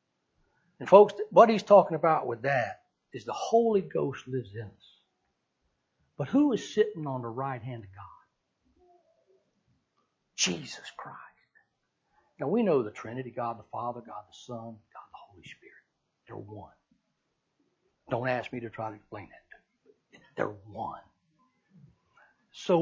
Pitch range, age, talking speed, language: 155-235 Hz, 60-79, 145 wpm, English